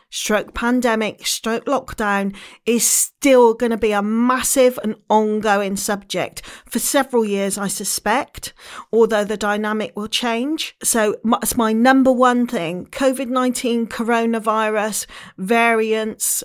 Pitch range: 205-255 Hz